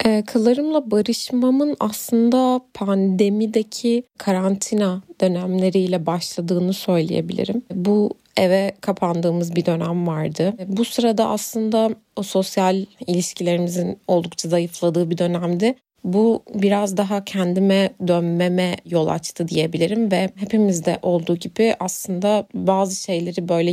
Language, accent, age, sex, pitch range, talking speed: Turkish, native, 30-49, female, 175-215 Hz, 100 wpm